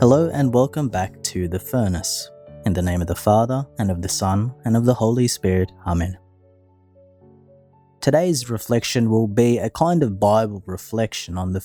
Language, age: English, 30-49